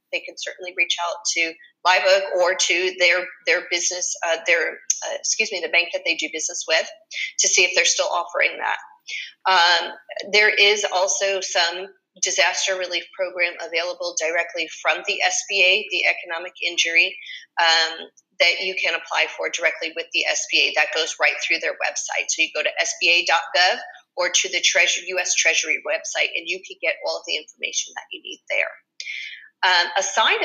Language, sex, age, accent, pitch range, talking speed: English, female, 40-59, American, 170-215 Hz, 175 wpm